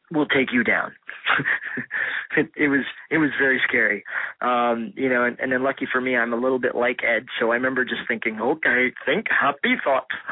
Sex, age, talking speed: male, 20-39, 200 wpm